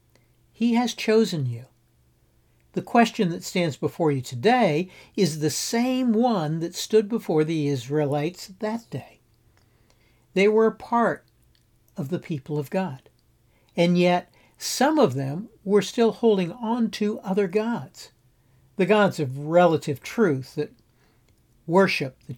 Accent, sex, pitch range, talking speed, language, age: American, male, 130-185 Hz, 135 wpm, English, 60-79